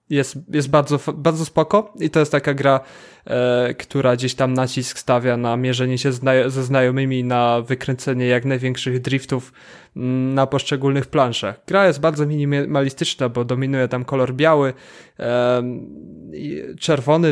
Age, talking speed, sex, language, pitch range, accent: 20-39, 140 wpm, male, Polish, 130-150 Hz, native